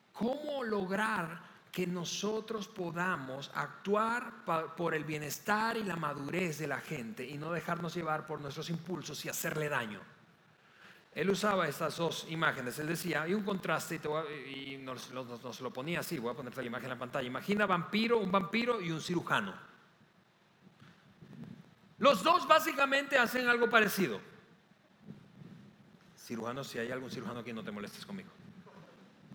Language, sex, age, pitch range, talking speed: Spanish, male, 40-59, 160-205 Hz, 150 wpm